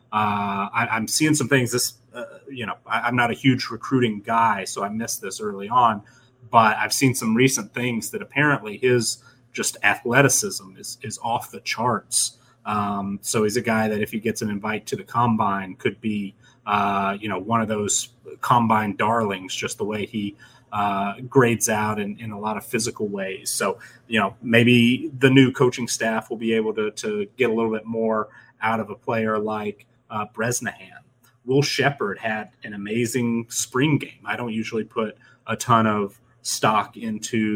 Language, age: English, 30-49